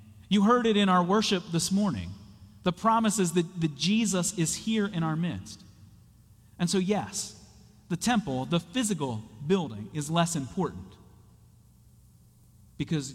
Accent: American